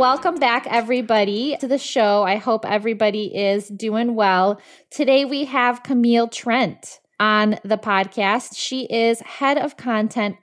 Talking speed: 145 wpm